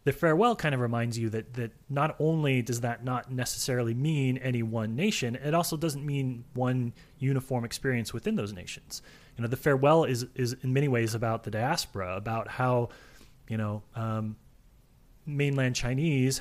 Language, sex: English, male